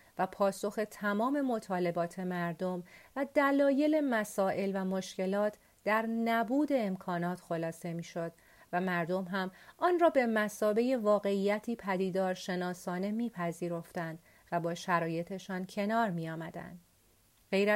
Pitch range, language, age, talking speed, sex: 185-250 Hz, Persian, 40-59, 110 wpm, female